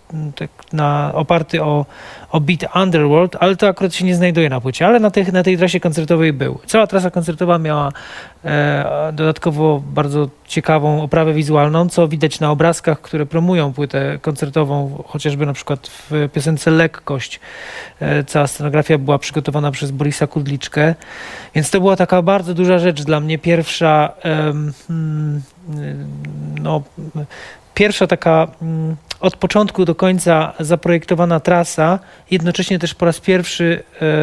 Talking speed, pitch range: 140 wpm, 145-170 Hz